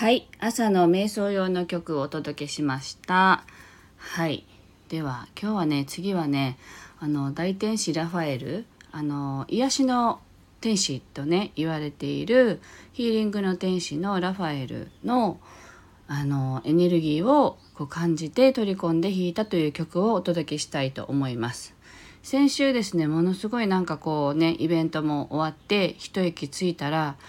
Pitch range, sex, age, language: 150-200 Hz, female, 40-59, Japanese